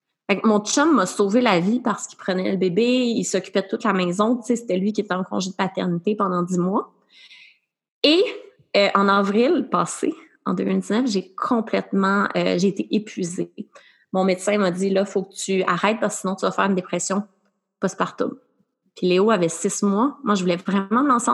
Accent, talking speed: Canadian, 210 wpm